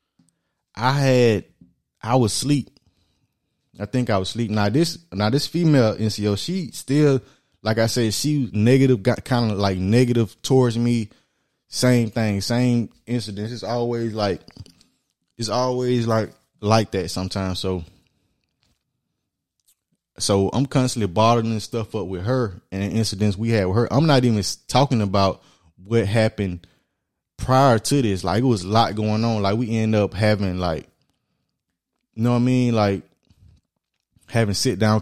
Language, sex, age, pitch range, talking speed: English, male, 20-39, 100-120 Hz, 155 wpm